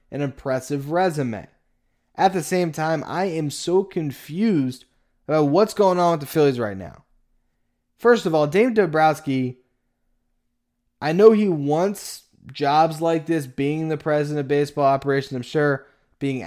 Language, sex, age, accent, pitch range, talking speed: English, male, 10-29, American, 135-165 Hz, 150 wpm